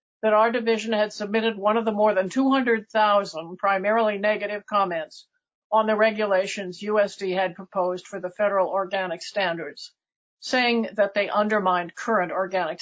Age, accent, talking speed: 50-69, American, 145 wpm